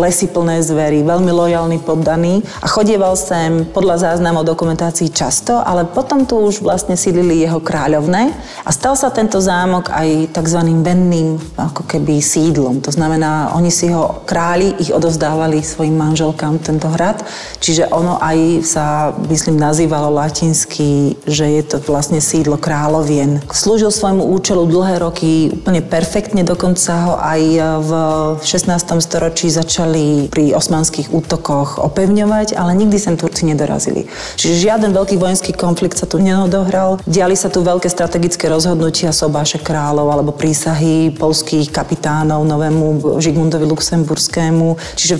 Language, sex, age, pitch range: Slovak, female, 40-59, 160-180 Hz